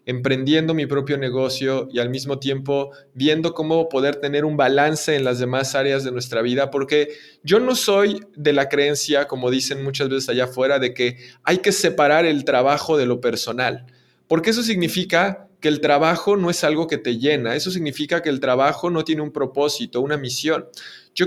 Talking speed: 190 wpm